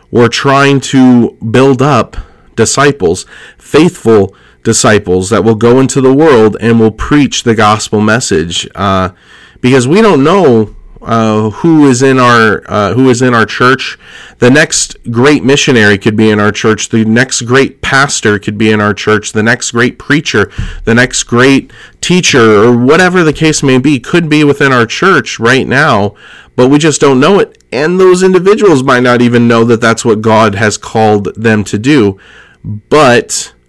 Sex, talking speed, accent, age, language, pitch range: male, 170 wpm, American, 30-49, English, 110-135 Hz